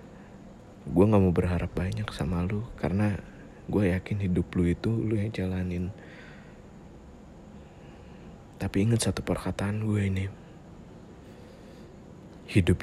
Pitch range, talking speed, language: 85-100 Hz, 110 wpm, Indonesian